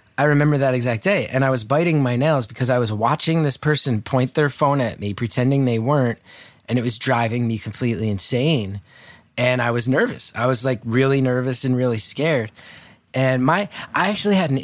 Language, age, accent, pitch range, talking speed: English, 20-39, American, 110-140 Hz, 205 wpm